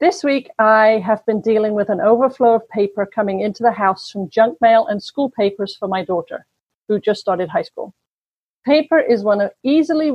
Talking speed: 200 wpm